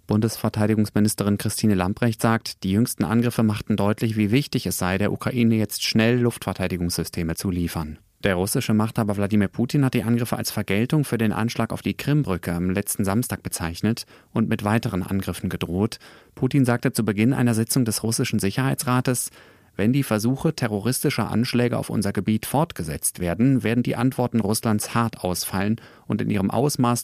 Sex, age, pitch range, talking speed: male, 30-49, 100-120 Hz, 165 wpm